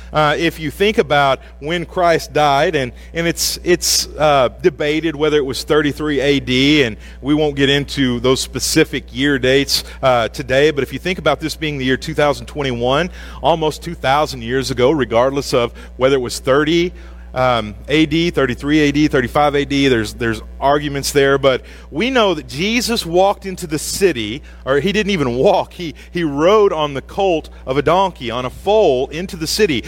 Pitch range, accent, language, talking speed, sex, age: 140-195 Hz, American, English, 180 wpm, male, 40-59